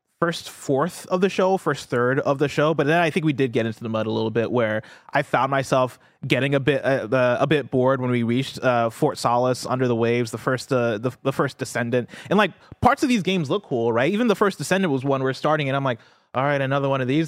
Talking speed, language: 265 wpm, English